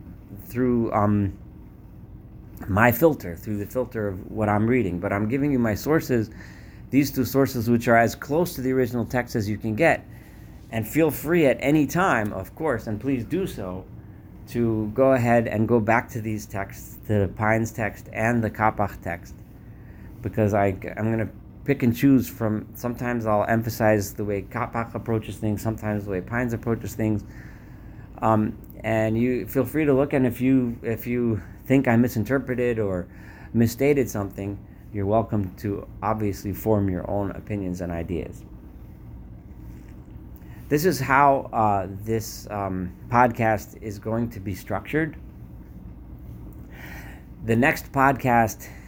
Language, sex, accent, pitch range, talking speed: English, male, American, 100-120 Hz, 155 wpm